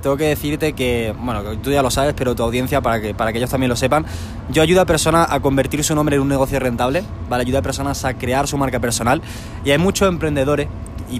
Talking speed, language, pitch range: 245 wpm, Spanish, 120-150 Hz